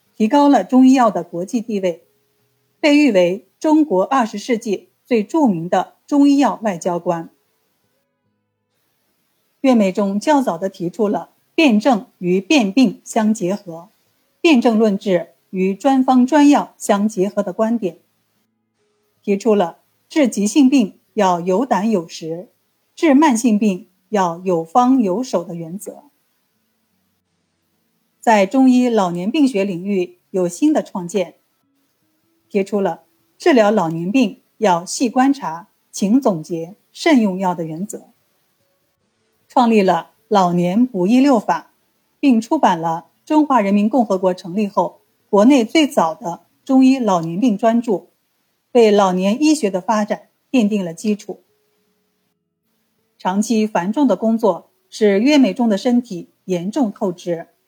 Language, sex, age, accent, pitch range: Chinese, female, 50-69, native, 185-250 Hz